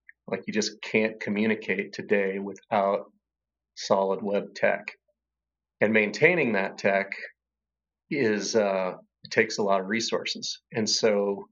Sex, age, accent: male, 30-49, American